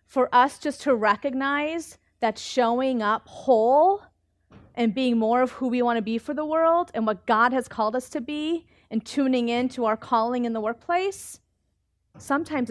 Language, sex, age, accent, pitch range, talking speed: English, female, 30-49, American, 210-265 Hz, 175 wpm